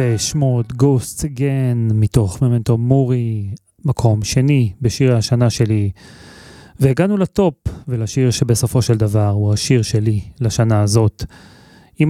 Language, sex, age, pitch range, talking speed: Hebrew, male, 30-49, 110-130 Hz, 115 wpm